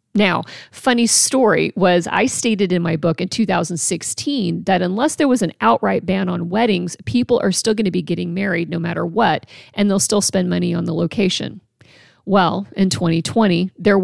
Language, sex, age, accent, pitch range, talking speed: English, female, 40-59, American, 170-215 Hz, 185 wpm